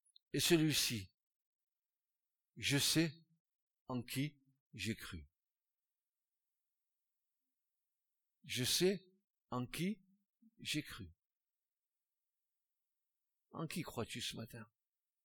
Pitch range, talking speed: 135-230 Hz, 75 wpm